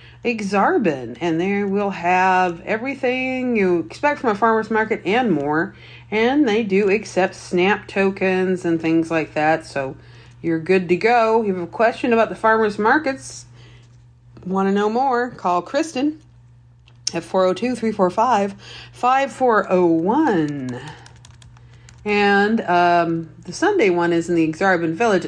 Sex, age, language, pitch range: female, 40-59, English, 155-235 Hz